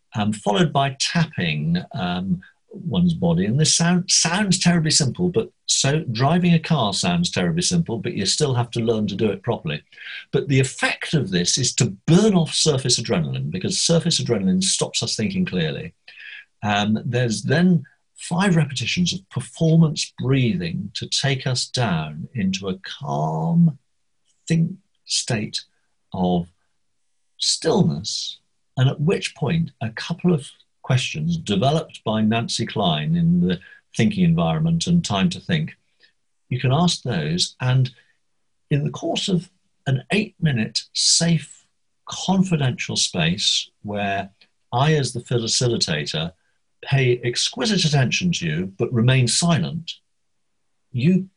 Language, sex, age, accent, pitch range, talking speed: English, male, 50-69, British, 125-175 Hz, 135 wpm